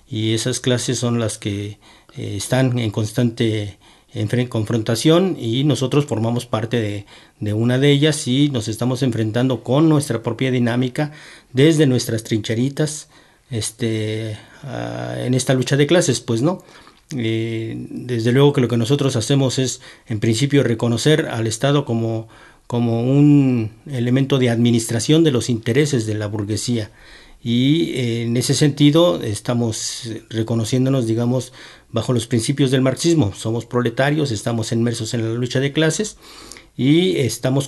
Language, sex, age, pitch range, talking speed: Spanish, male, 50-69, 115-135 Hz, 145 wpm